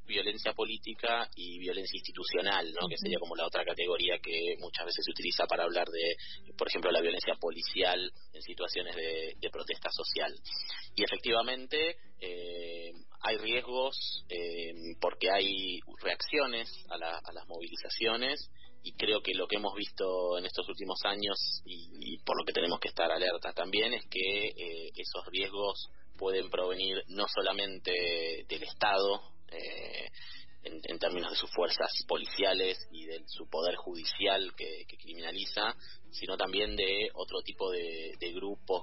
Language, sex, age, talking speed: Spanish, male, 30-49, 155 wpm